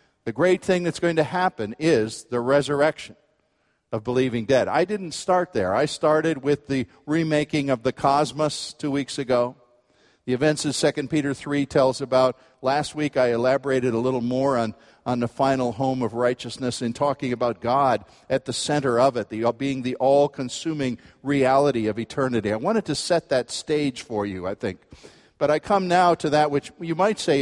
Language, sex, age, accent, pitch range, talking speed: English, male, 50-69, American, 125-165 Hz, 190 wpm